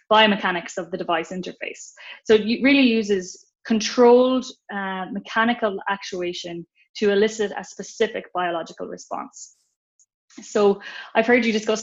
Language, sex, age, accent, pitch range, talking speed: English, female, 20-39, Irish, 180-215 Hz, 120 wpm